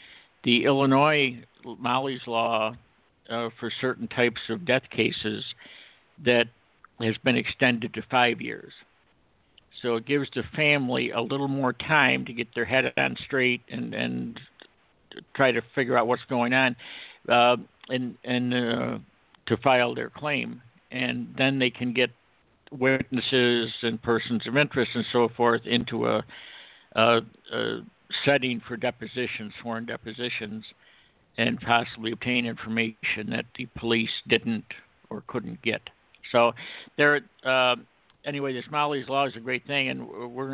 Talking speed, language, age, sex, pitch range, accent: 140 wpm, English, 60-79, male, 115-130 Hz, American